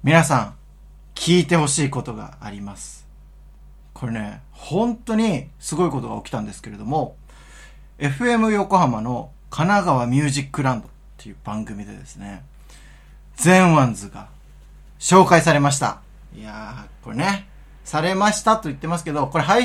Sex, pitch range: male, 115-160 Hz